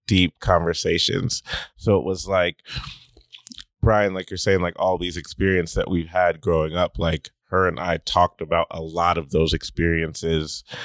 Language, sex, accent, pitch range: English, male, American, 80-100 Hz